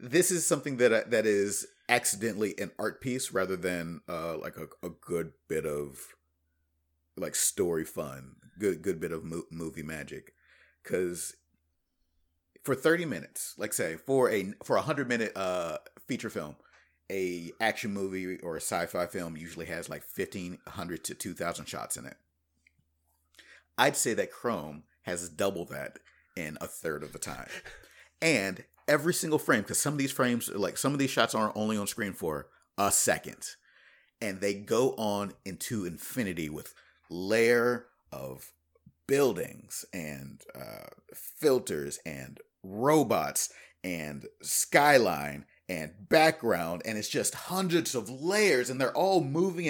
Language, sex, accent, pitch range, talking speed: English, male, American, 80-135 Hz, 150 wpm